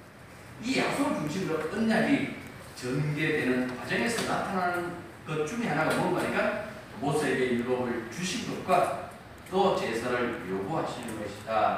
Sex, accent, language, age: male, native, Korean, 40-59